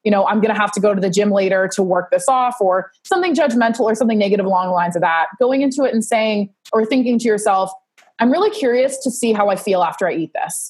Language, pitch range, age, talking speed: English, 195-240 Hz, 20-39, 270 wpm